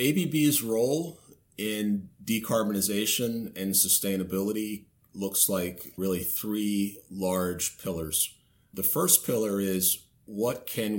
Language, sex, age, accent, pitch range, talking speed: English, male, 30-49, American, 90-110 Hz, 100 wpm